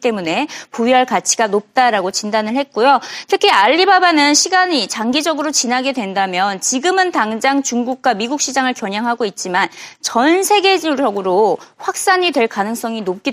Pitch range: 215-315 Hz